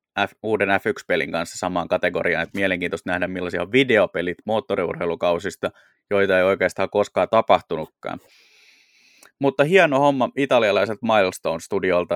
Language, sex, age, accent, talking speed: Finnish, male, 20-39, native, 110 wpm